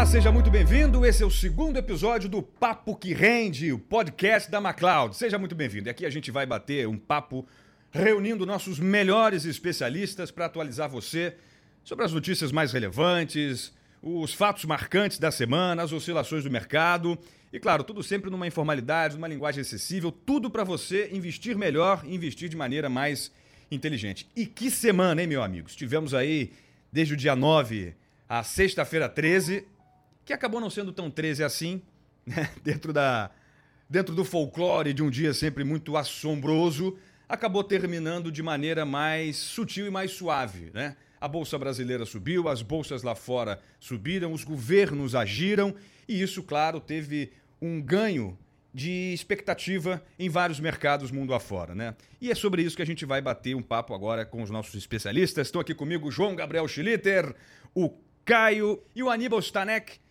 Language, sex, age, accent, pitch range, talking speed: Portuguese, male, 40-59, Brazilian, 140-190 Hz, 165 wpm